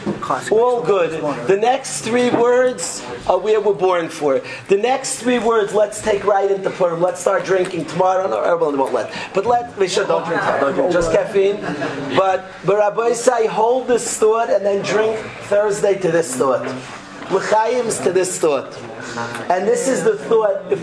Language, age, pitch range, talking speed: English, 40-59, 180-225 Hz, 175 wpm